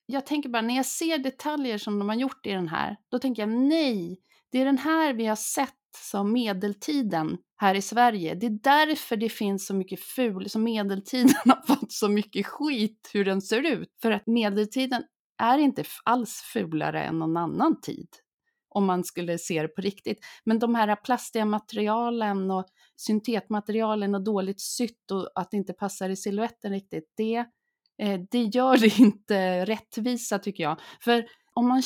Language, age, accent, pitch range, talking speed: Swedish, 30-49, native, 200-260 Hz, 180 wpm